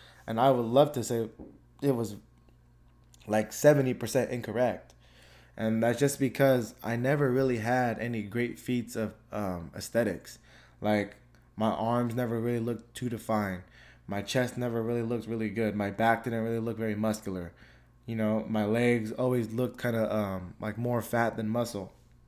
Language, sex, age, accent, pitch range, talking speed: English, male, 20-39, American, 105-125 Hz, 165 wpm